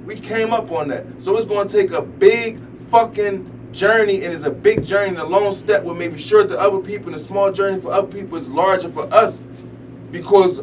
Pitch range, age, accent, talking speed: 135-200 Hz, 20-39, American, 230 wpm